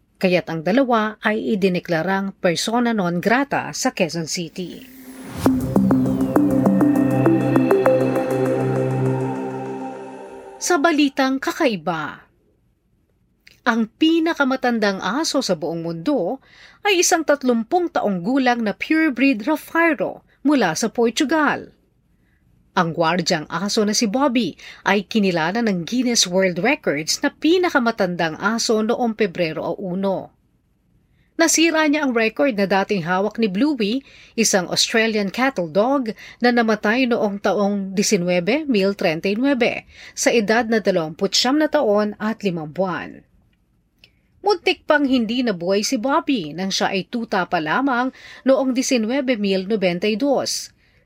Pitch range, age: 185-265 Hz, 40-59